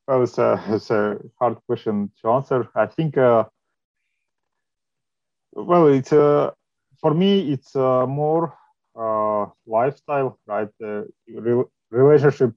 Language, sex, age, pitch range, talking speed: English, male, 30-49, 105-130 Hz, 125 wpm